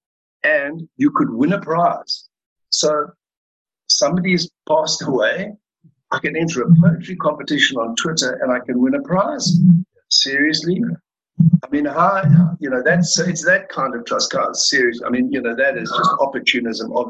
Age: 60-79